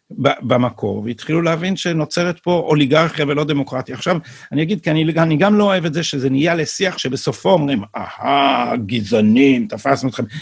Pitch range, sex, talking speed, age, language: 130-180 Hz, male, 165 wpm, 50-69, Hebrew